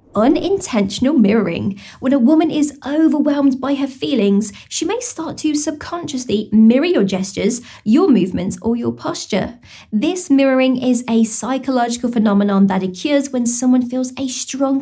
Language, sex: English, female